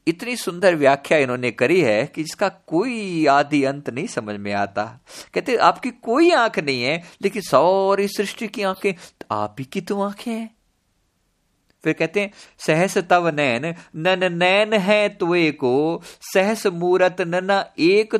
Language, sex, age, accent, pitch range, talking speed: Hindi, male, 50-69, native, 130-210 Hz, 160 wpm